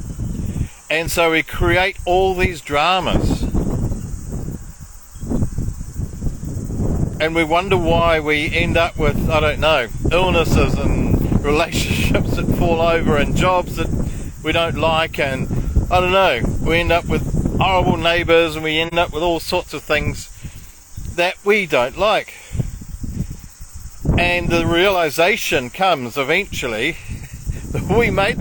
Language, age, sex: English, 50-69, male